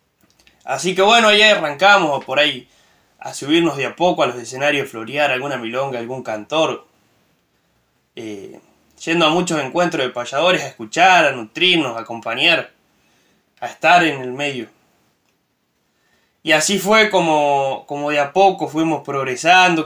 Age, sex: 20-39, male